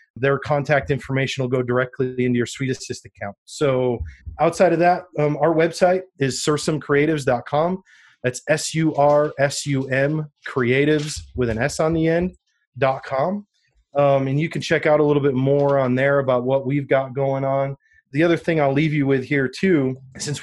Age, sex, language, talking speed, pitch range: 30-49, male, English, 175 wpm, 125-150 Hz